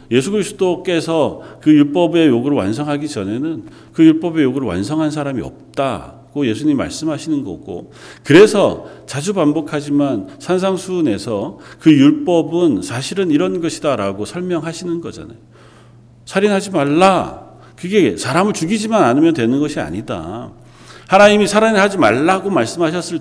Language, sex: Korean, male